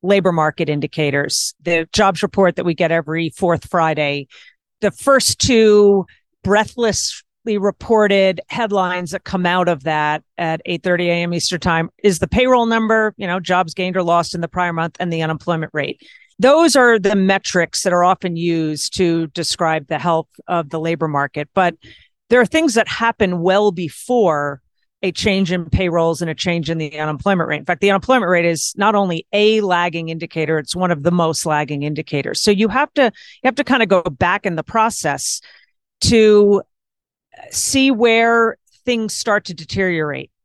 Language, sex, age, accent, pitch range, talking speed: English, female, 40-59, American, 160-205 Hz, 180 wpm